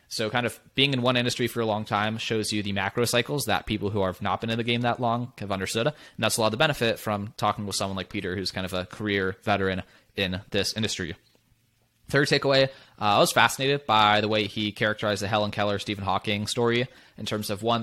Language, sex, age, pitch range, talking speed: English, male, 20-39, 100-115 Hz, 240 wpm